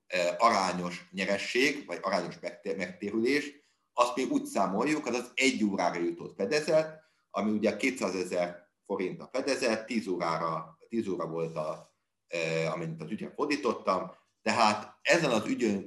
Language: Hungarian